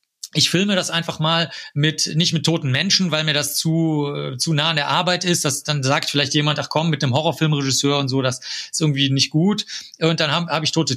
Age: 40-59